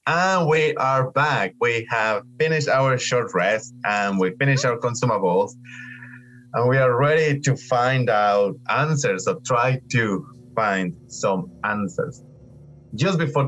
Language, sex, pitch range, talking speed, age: English, male, 100-130 Hz, 140 wpm, 30-49